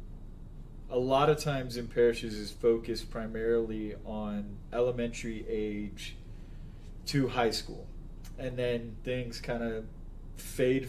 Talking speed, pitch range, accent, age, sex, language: 115 wpm, 110-125 Hz, American, 20-39, male, English